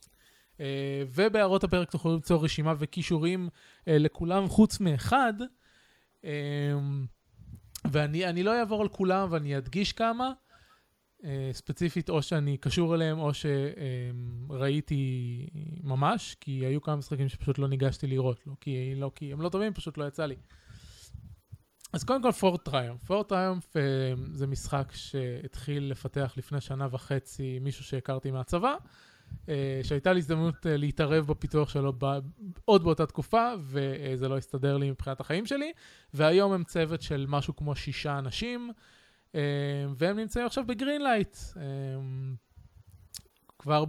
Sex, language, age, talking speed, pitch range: male, Hebrew, 20-39, 120 wpm, 135-180 Hz